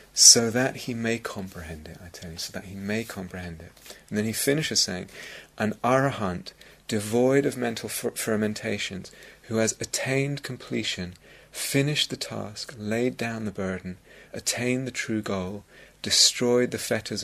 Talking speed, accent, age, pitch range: 155 wpm, British, 30-49, 95-120 Hz